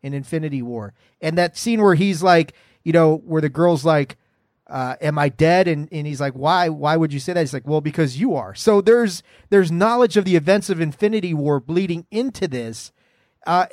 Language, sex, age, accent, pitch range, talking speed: English, male, 40-59, American, 145-185 Hz, 215 wpm